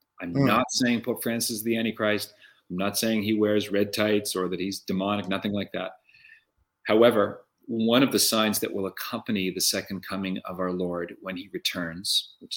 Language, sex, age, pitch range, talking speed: English, male, 40-59, 90-105 Hz, 190 wpm